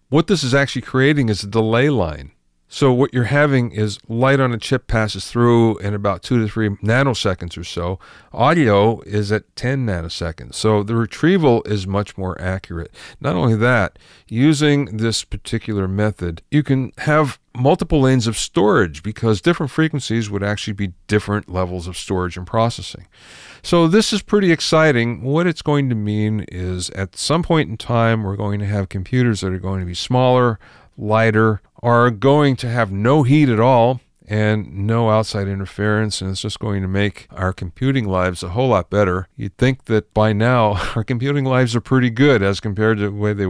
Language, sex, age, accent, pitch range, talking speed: English, male, 40-59, American, 95-130 Hz, 190 wpm